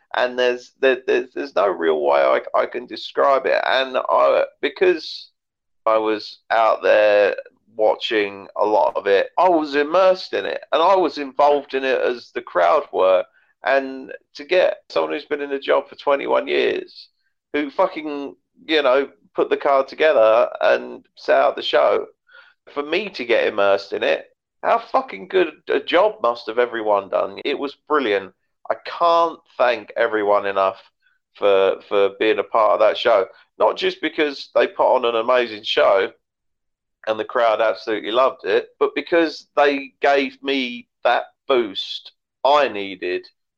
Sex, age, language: male, 40-59, English